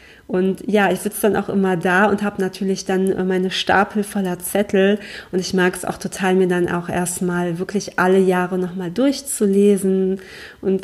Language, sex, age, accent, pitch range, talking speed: German, female, 30-49, German, 190-215 Hz, 175 wpm